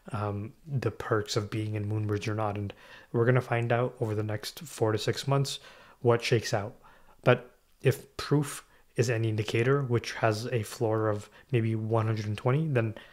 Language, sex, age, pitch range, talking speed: English, male, 20-39, 105-120 Hz, 185 wpm